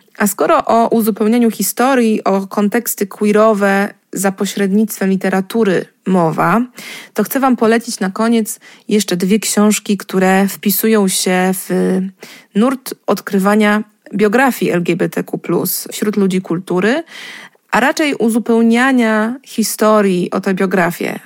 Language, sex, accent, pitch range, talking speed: Polish, female, native, 190-220 Hz, 110 wpm